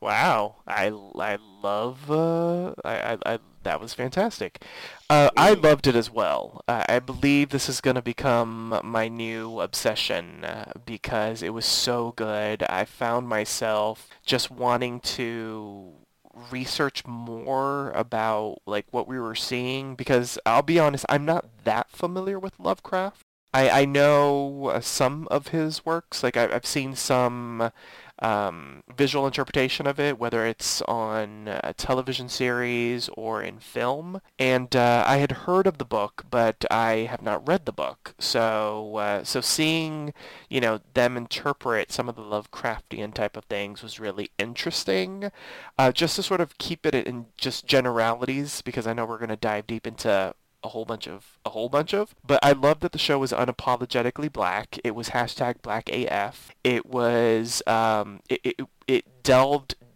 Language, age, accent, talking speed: English, 20-39, American, 160 wpm